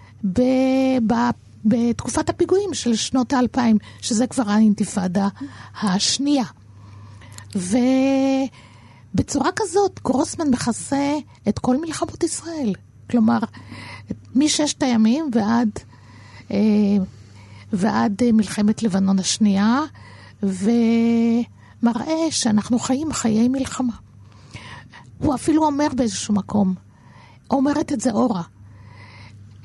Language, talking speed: Hebrew, 80 wpm